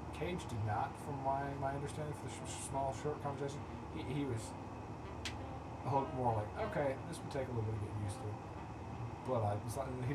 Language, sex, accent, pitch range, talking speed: English, male, American, 105-115 Hz, 205 wpm